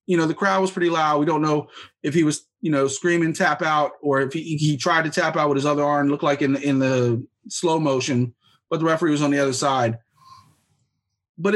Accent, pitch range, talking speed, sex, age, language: American, 140-180 Hz, 245 wpm, male, 30-49, English